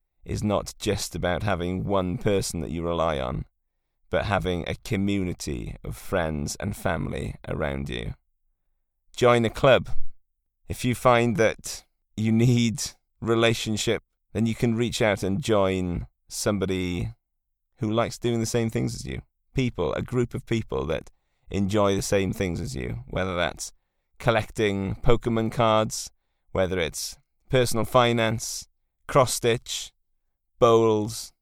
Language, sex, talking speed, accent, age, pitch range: English, male, 135 wpm, British, 30-49, 95-115 Hz